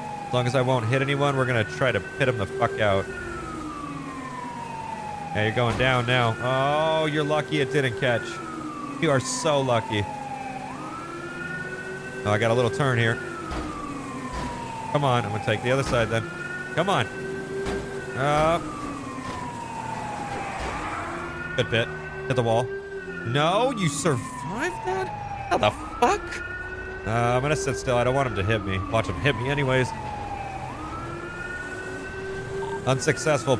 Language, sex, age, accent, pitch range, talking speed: English, male, 30-49, American, 115-160 Hz, 150 wpm